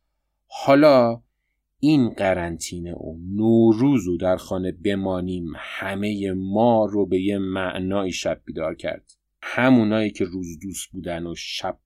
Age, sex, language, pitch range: 30-49, male, Persian, 95-120 Hz